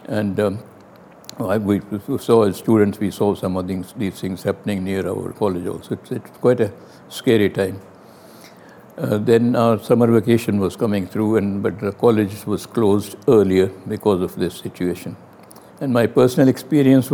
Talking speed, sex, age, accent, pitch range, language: 165 wpm, male, 60-79, Indian, 95-115 Hz, English